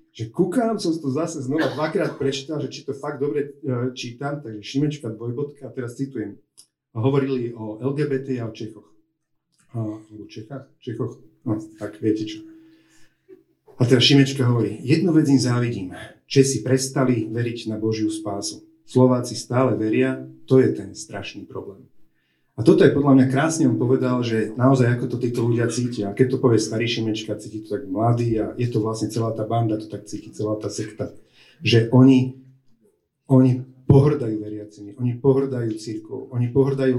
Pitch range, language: 110-140 Hz, Slovak